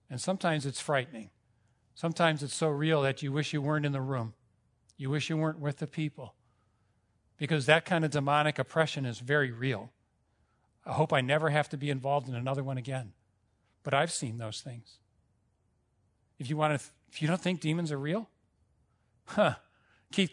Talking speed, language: 185 wpm, English